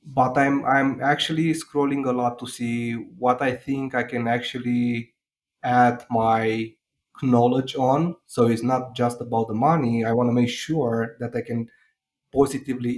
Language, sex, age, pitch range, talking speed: English, male, 20-39, 115-130 Hz, 170 wpm